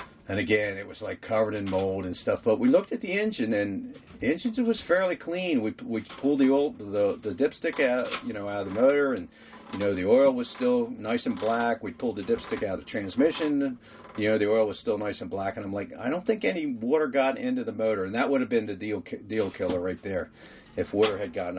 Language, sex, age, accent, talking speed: English, male, 50-69, American, 255 wpm